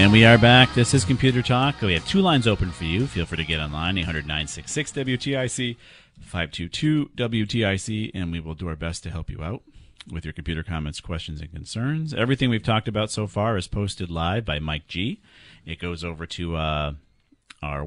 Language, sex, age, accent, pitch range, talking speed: English, male, 40-59, American, 85-115 Hz, 190 wpm